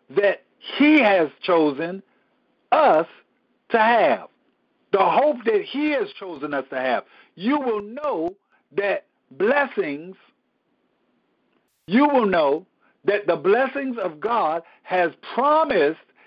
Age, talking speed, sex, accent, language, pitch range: 60-79, 115 wpm, male, American, English, 185-275 Hz